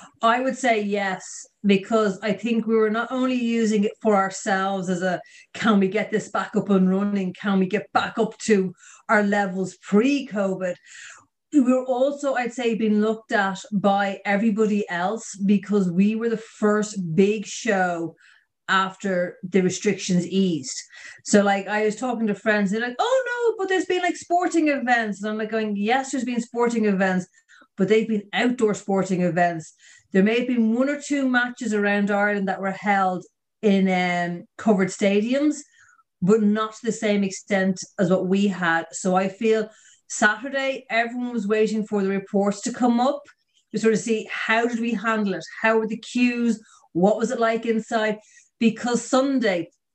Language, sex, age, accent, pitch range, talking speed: English, female, 30-49, Irish, 195-240 Hz, 180 wpm